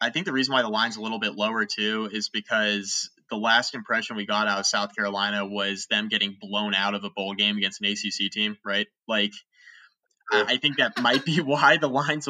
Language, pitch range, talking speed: English, 100-120 Hz, 225 wpm